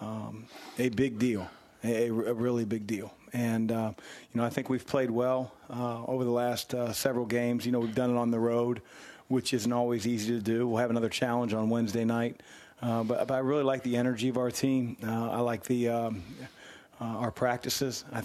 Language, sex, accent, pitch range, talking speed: English, male, American, 115-125 Hz, 215 wpm